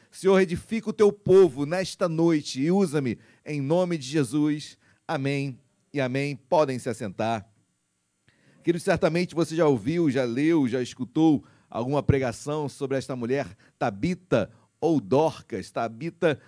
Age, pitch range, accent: 40-59, 135-175 Hz, Brazilian